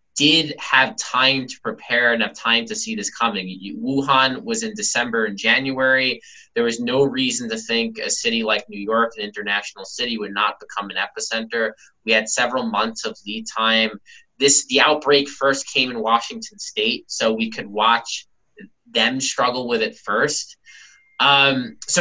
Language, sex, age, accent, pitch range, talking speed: English, male, 20-39, American, 120-185 Hz, 170 wpm